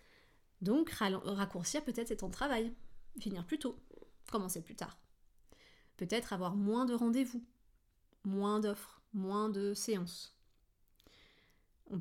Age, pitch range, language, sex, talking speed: 30-49, 195-235 Hz, French, female, 120 wpm